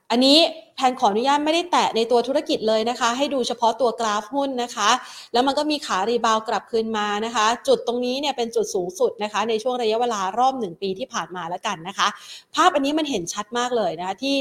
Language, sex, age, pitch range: Thai, female, 30-49, 205-265 Hz